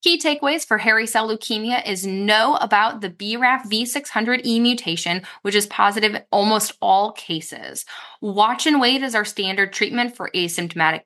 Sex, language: female, English